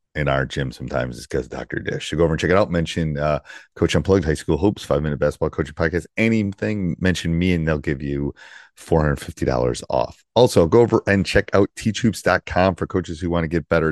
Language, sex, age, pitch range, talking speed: English, male, 30-49, 75-90 Hz, 210 wpm